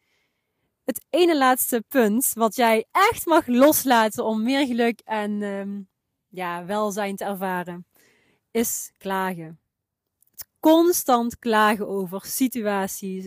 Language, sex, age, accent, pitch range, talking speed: Dutch, female, 30-49, Dutch, 175-220 Hz, 110 wpm